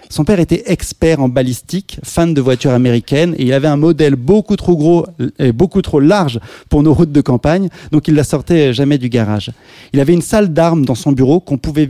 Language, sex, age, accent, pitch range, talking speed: French, male, 30-49, French, 125-170 Hz, 220 wpm